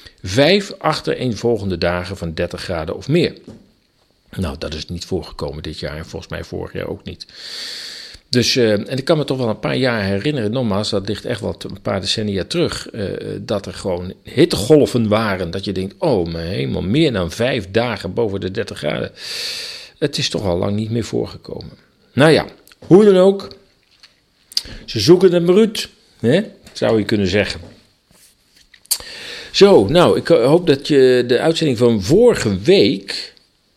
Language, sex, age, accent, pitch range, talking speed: Dutch, male, 50-69, Dutch, 95-140 Hz, 170 wpm